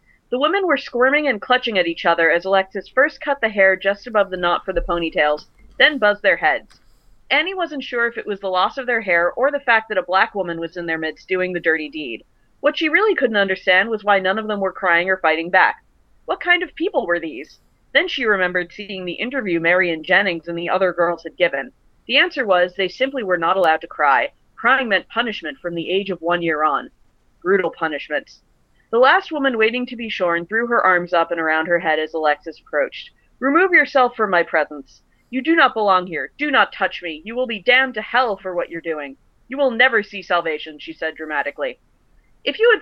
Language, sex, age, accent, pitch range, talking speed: English, female, 30-49, American, 170-255 Hz, 225 wpm